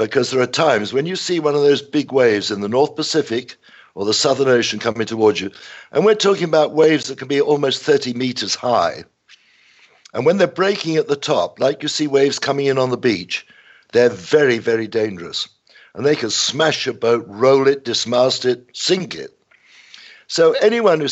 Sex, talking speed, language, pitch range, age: male, 200 wpm, English, 110-140 Hz, 60-79